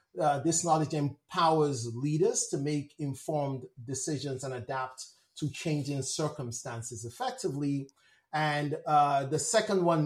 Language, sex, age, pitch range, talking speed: English, male, 30-49, 130-160 Hz, 120 wpm